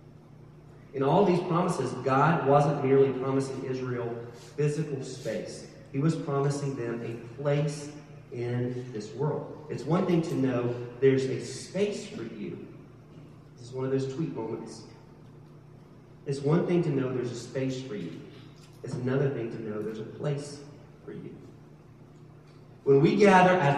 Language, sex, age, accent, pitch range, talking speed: English, male, 40-59, American, 125-150 Hz, 155 wpm